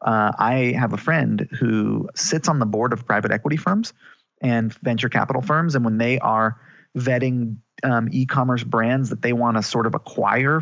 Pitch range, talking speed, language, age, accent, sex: 110-135 Hz, 185 wpm, English, 30-49, American, male